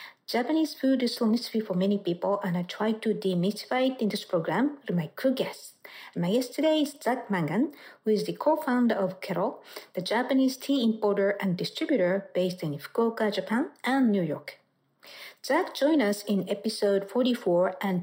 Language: English